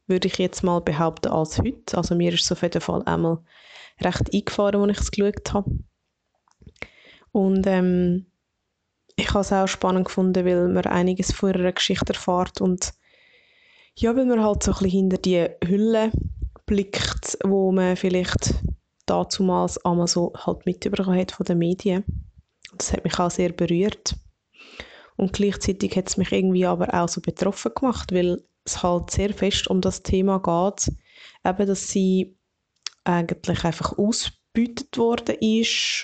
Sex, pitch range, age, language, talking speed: female, 175-200 Hz, 20-39, German, 155 wpm